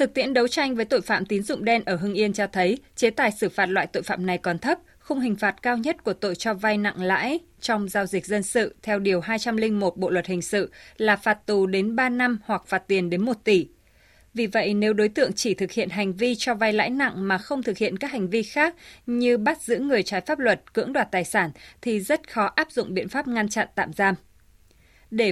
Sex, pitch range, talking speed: female, 185-235 Hz, 250 wpm